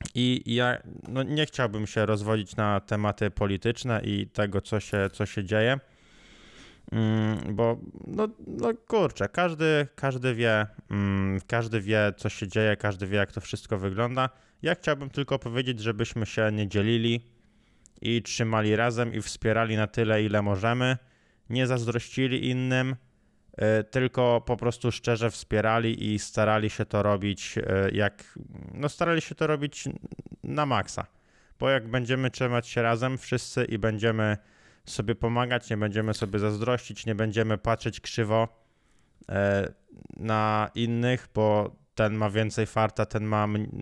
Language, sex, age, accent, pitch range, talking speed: Polish, male, 20-39, native, 105-125 Hz, 135 wpm